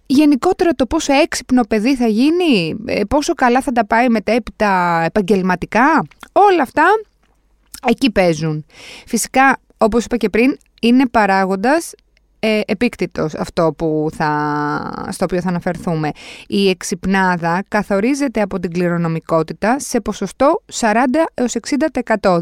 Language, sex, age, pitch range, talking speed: Greek, female, 20-39, 185-265 Hz, 110 wpm